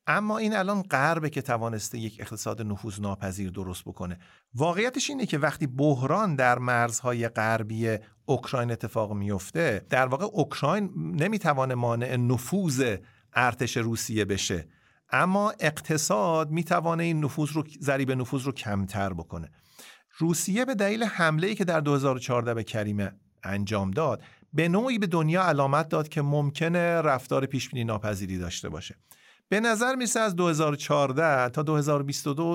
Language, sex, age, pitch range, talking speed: Persian, male, 50-69, 120-170 Hz, 130 wpm